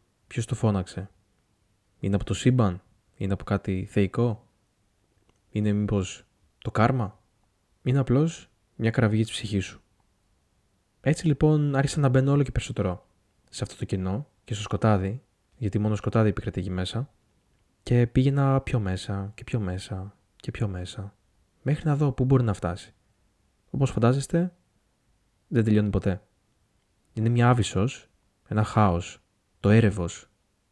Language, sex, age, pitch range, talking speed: Greek, male, 20-39, 100-120 Hz, 140 wpm